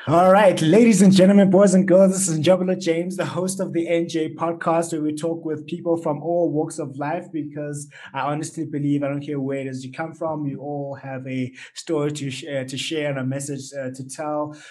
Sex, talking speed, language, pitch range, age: male, 225 wpm, English, 130-155 Hz, 20-39